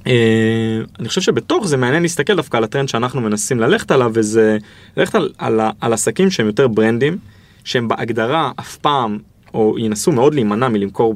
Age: 20-39